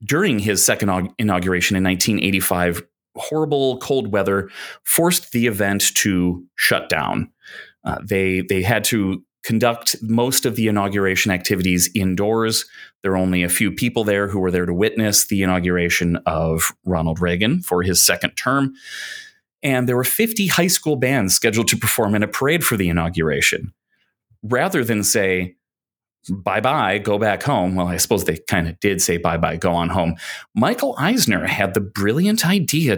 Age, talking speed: 30-49, 160 wpm